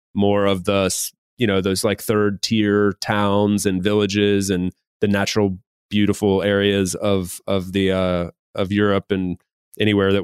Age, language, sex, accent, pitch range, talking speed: 30-49, English, male, American, 100-110 Hz, 150 wpm